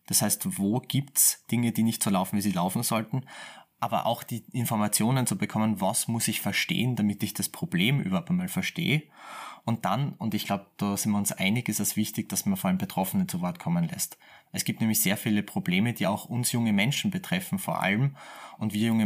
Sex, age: male, 20-39